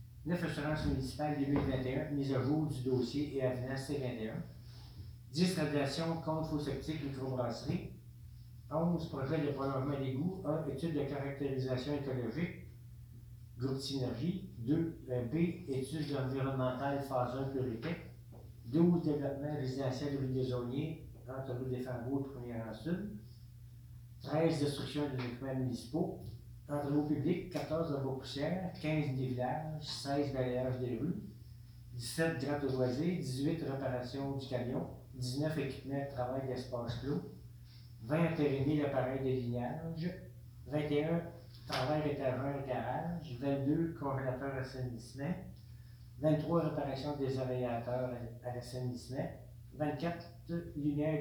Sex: male